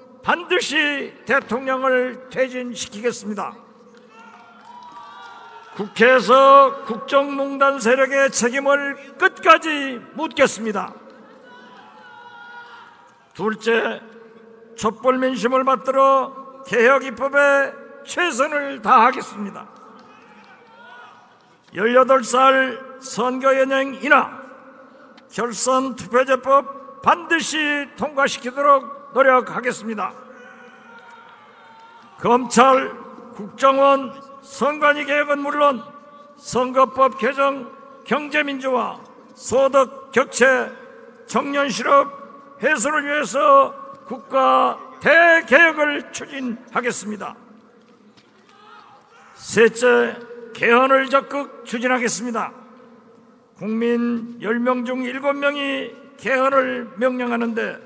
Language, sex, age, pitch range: Korean, male, 50-69, 240-275 Hz